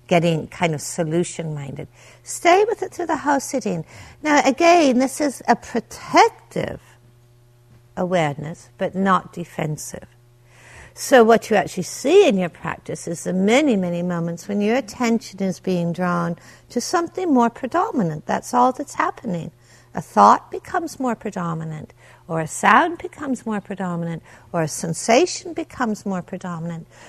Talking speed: 145 wpm